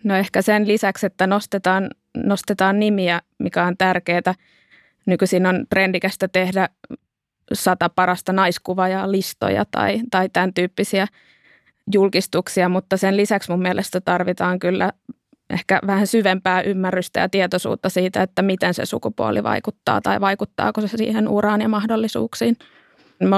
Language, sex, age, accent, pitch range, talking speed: Finnish, female, 20-39, native, 185-205 Hz, 135 wpm